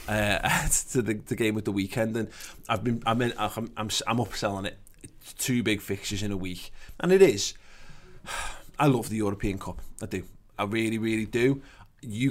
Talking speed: 185 wpm